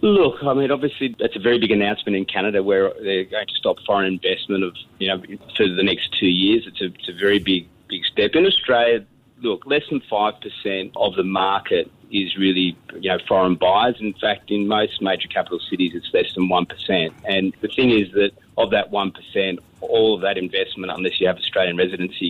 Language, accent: English, Australian